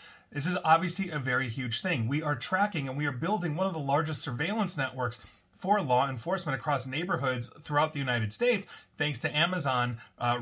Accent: American